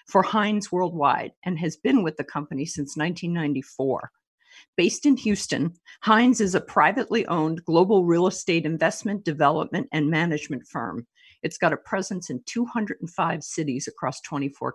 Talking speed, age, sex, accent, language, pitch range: 145 wpm, 50-69, female, American, English, 150-190 Hz